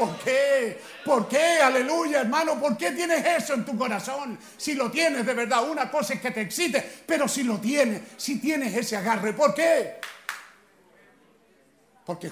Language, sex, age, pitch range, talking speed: Spanish, male, 50-69, 195-295 Hz, 170 wpm